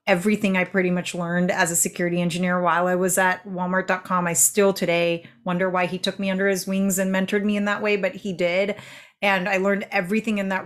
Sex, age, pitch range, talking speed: female, 30-49, 175-195 Hz, 225 wpm